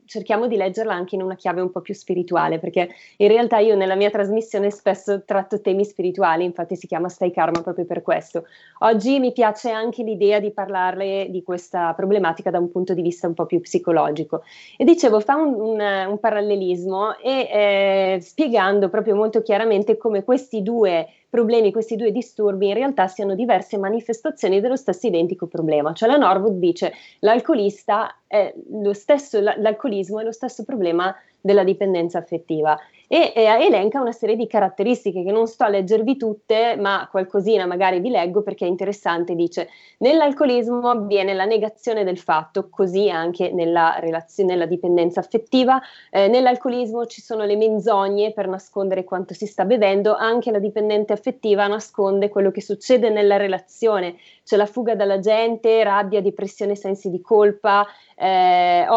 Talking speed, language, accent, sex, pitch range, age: 160 wpm, Italian, native, female, 185-220 Hz, 20-39